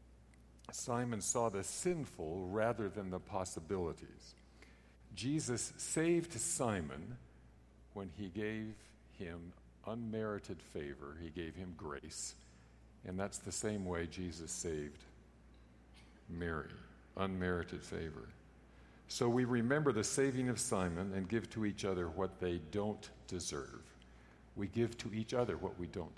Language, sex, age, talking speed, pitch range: English, male, 50-69, 125 wpm, 65-105 Hz